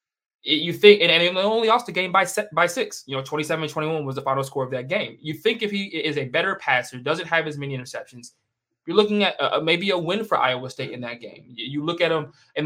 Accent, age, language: American, 20-39, English